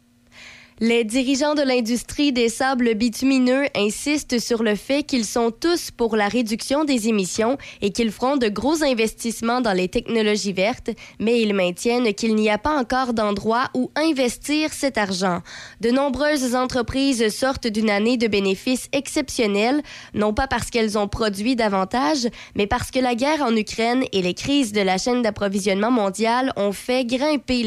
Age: 20-39